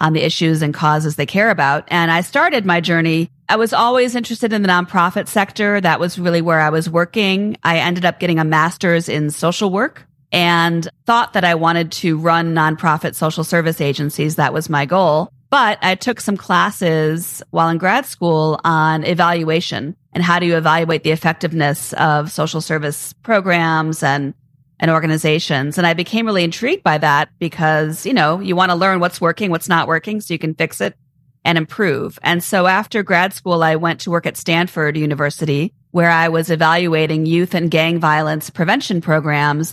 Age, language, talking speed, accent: 40-59, English, 190 wpm, American